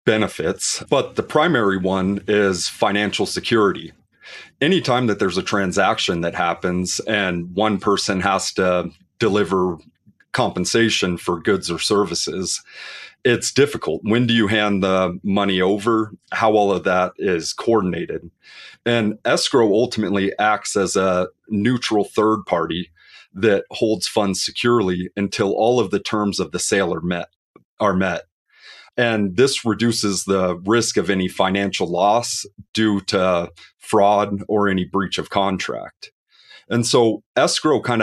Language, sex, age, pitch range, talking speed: English, male, 30-49, 95-110 Hz, 135 wpm